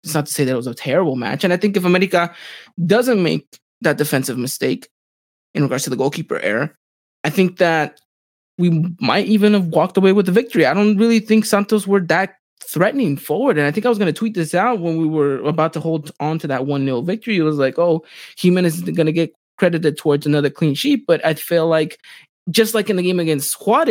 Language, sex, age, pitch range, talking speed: English, male, 20-39, 140-190 Hz, 230 wpm